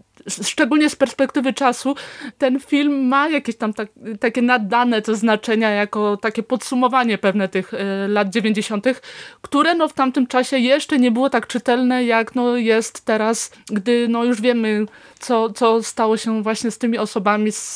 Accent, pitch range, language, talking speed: native, 205-245 Hz, Polish, 160 wpm